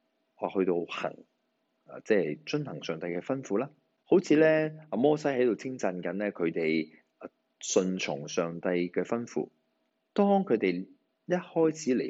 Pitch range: 90-130 Hz